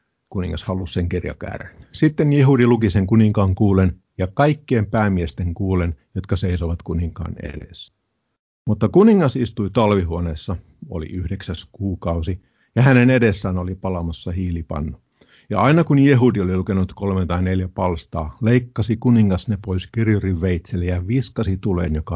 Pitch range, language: 90-110 Hz, Finnish